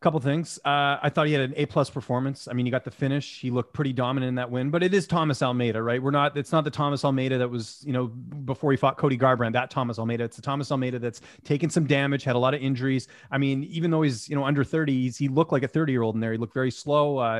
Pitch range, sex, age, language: 125-150 Hz, male, 30-49, English